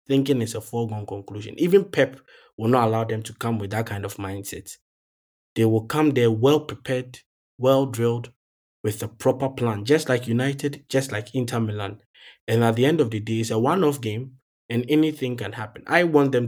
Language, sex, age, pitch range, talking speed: English, male, 20-39, 110-135 Hz, 195 wpm